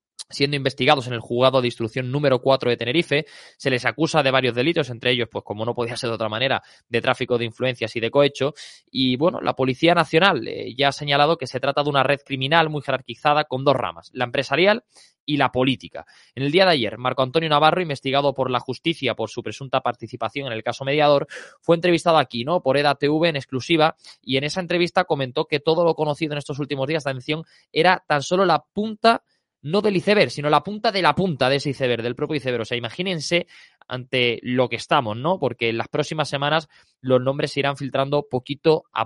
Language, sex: Spanish, male